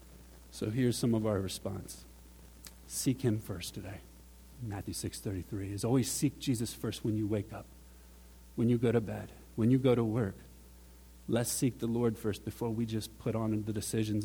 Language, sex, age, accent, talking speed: English, male, 50-69, American, 175 wpm